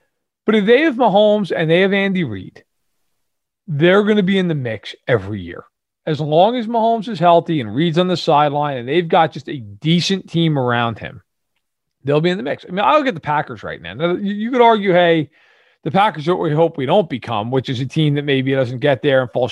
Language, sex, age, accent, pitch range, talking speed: English, male, 40-59, American, 135-190 Hz, 235 wpm